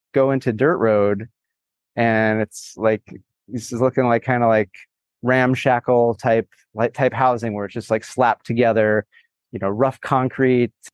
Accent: American